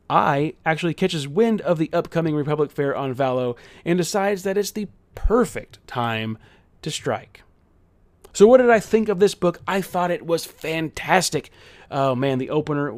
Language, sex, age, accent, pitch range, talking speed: English, male, 30-49, American, 130-175 Hz, 170 wpm